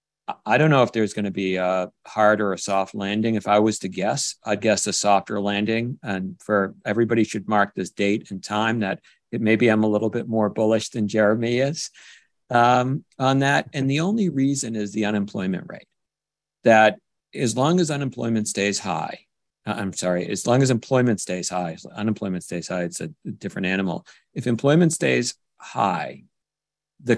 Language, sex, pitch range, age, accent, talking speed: English, male, 95-115 Hz, 50-69, American, 185 wpm